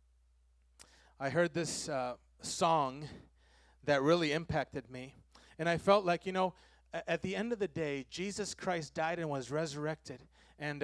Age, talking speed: 30-49, 155 wpm